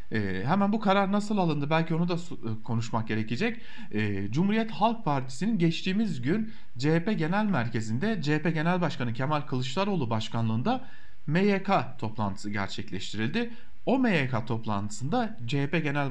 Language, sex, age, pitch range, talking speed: German, male, 40-59, 130-205 Hz, 125 wpm